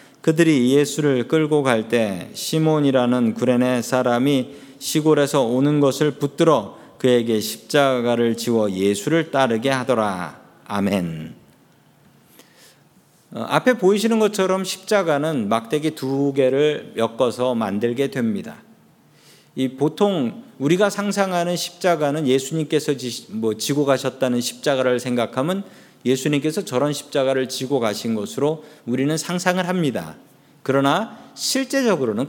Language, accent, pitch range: Korean, native, 125-175 Hz